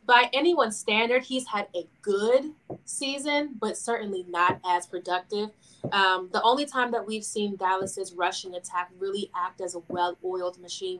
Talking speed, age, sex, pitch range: 160 wpm, 20-39, female, 185-235 Hz